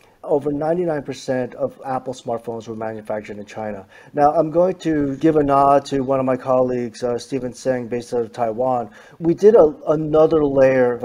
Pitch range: 120-155 Hz